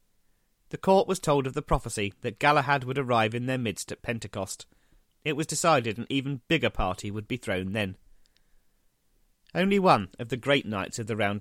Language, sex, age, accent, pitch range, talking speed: English, male, 30-49, British, 105-140 Hz, 190 wpm